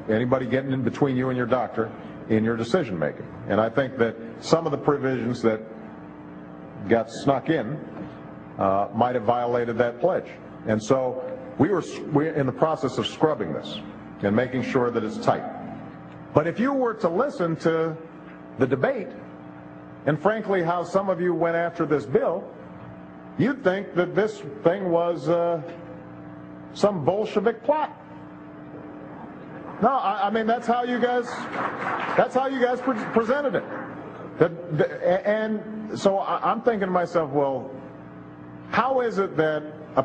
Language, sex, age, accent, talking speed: English, male, 50-69, American, 160 wpm